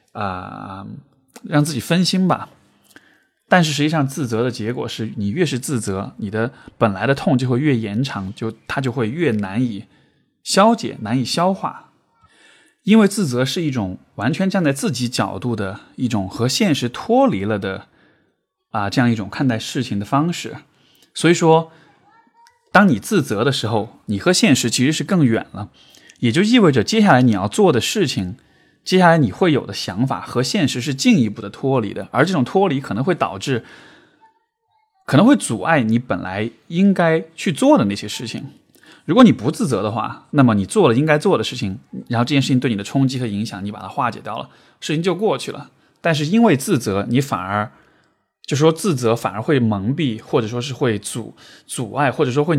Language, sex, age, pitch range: Chinese, male, 20-39, 110-160 Hz